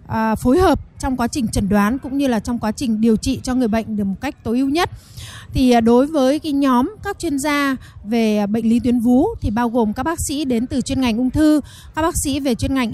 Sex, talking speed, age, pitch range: female, 255 wpm, 20-39, 230-285 Hz